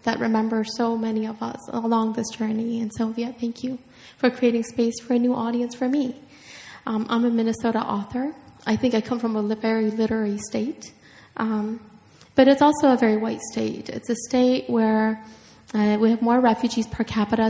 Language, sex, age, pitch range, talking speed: English, female, 10-29, 220-235 Hz, 190 wpm